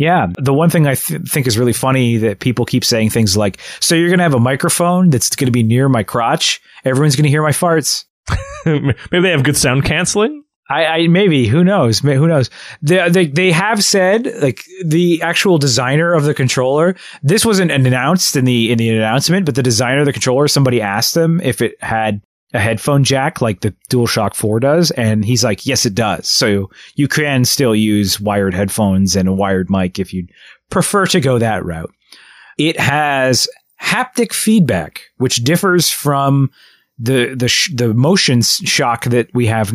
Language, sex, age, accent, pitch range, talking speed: English, male, 30-49, American, 120-170 Hz, 195 wpm